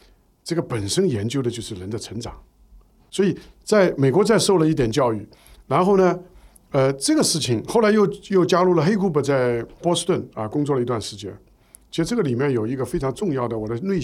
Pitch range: 115-175 Hz